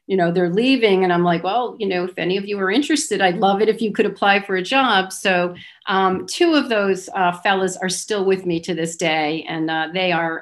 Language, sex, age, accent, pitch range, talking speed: English, female, 40-59, American, 165-200 Hz, 255 wpm